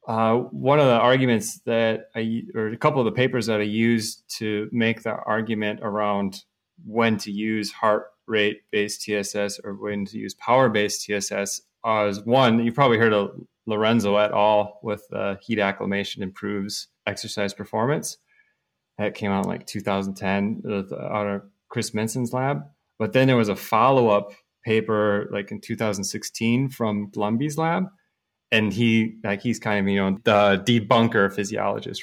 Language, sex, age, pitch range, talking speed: English, male, 30-49, 105-115 Hz, 155 wpm